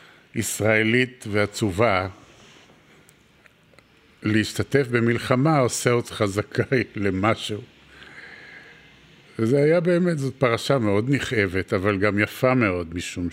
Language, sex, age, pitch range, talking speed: Hebrew, male, 50-69, 95-115 Hz, 90 wpm